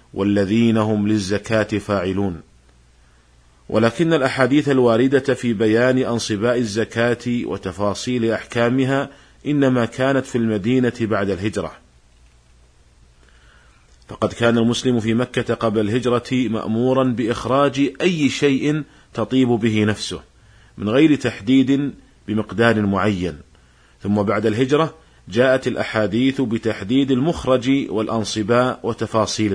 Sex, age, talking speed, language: male, 40-59, 95 wpm, Arabic